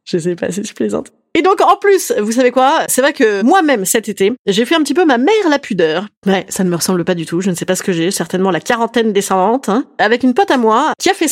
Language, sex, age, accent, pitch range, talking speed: French, female, 30-49, French, 190-285 Hz, 295 wpm